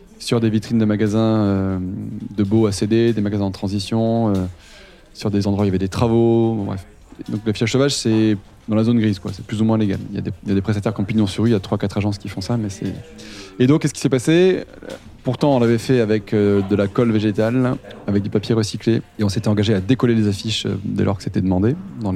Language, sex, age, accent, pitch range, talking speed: French, male, 20-39, French, 100-115 Hz, 255 wpm